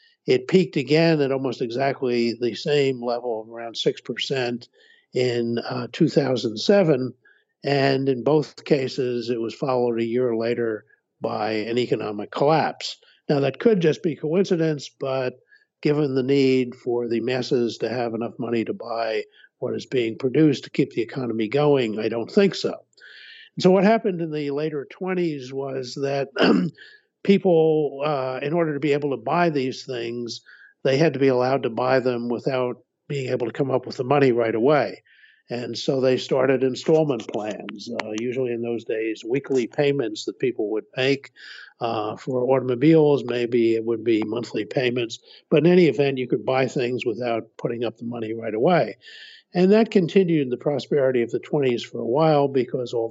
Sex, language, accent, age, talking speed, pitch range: male, English, American, 50-69, 175 wpm, 120-155 Hz